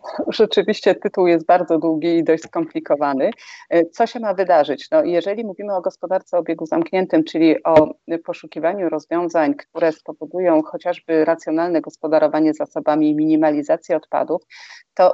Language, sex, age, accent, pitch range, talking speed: Polish, female, 40-59, native, 155-210 Hz, 130 wpm